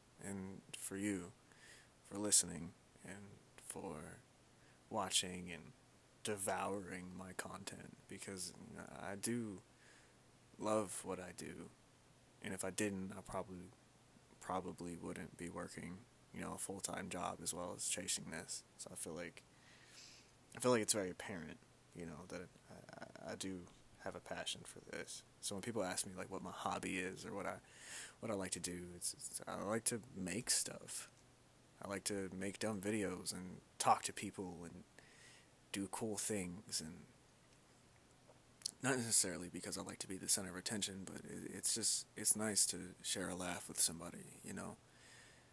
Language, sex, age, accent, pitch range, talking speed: English, male, 20-39, American, 90-105 Hz, 165 wpm